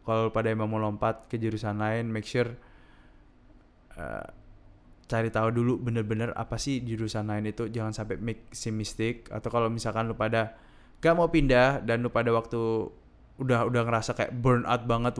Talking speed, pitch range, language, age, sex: 165 wpm, 110-130 Hz, Indonesian, 20-39, male